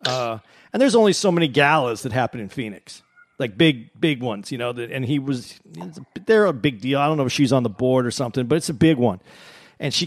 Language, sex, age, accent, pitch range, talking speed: English, male, 40-59, American, 125-160 Hz, 250 wpm